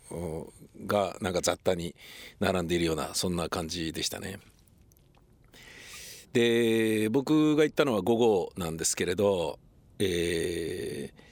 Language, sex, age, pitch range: Japanese, male, 50-69, 105-160 Hz